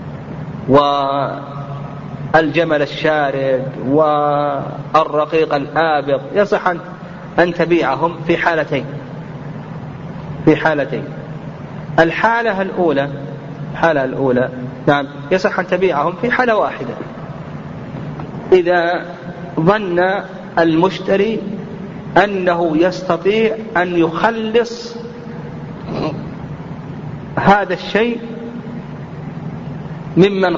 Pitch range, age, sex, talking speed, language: 150-195 Hz, 40-59, male, 65 wpm, Arabic